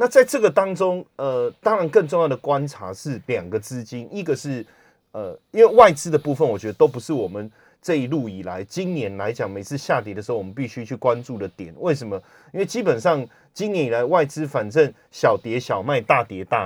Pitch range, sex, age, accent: 115-170 Hz, male, 30-49, native